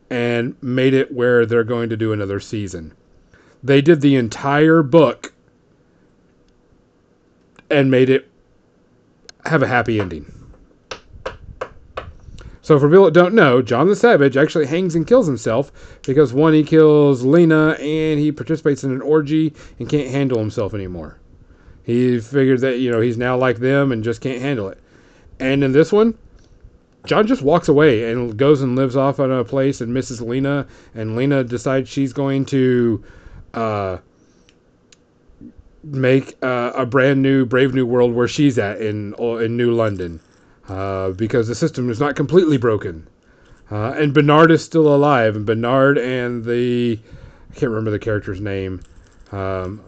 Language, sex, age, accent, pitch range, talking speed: English, male, 40-59, American, 110-145 Hz, 160 wpm